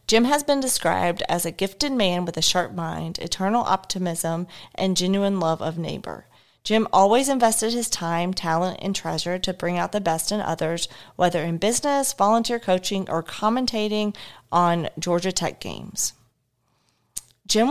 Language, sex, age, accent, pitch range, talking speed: English, female, 40-59, American, 170-210 Hz, 155 wpm